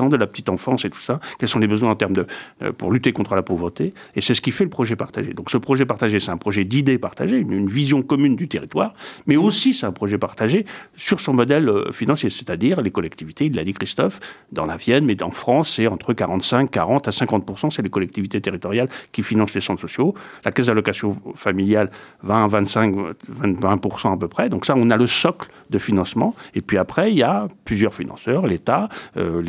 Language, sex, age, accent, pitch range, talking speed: French, male, 50-69, French, 100-140 Hz, 225 wpm